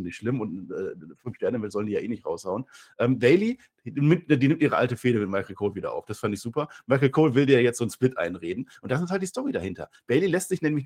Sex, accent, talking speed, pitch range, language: male, German, 280 wpm, 115-170 Hz, German